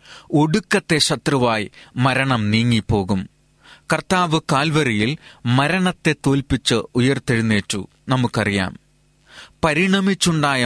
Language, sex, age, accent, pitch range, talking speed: Malayalam, male, 30-49, native, 115-155 Hz, 60 wpm